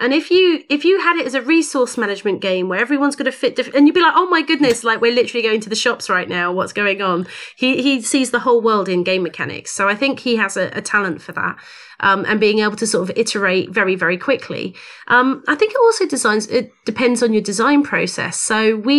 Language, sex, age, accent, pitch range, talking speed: English, female, 30-49, British, 195-240 Hz, 255 wpm